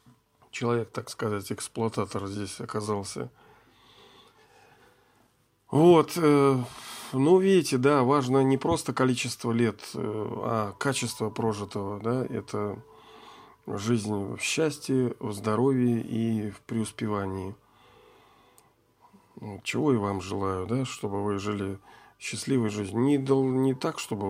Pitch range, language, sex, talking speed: 105-140 Hz, Russian, male, 100 wpm